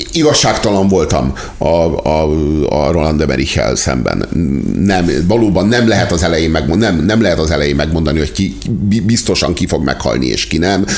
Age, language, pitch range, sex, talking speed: 50-69, Hungarian, 90-110 Hz, male, 160 wpm